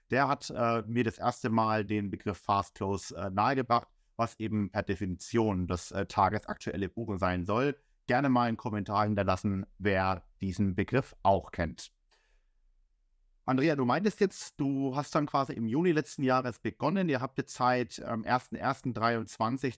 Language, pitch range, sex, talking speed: German, 100-125 Hz, male, 160 wpm